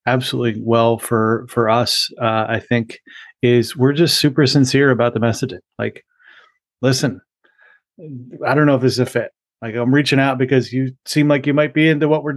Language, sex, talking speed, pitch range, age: English, male, 195 wpm, 120-150 Hz, 30-49